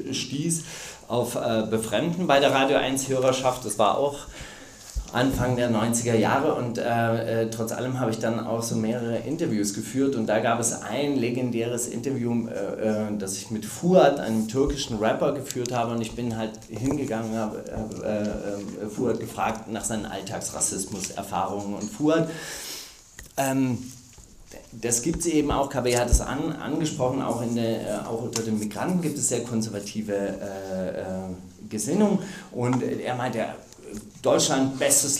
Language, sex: German, male